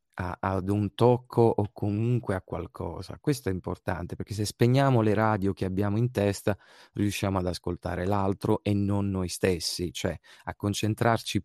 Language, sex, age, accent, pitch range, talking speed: Italian, male, 30-49, native, 95-115 Hz, 160 wpm